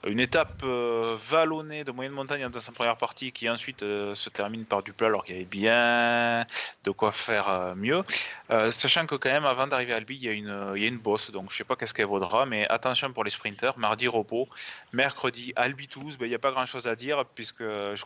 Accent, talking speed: French, 245 wpm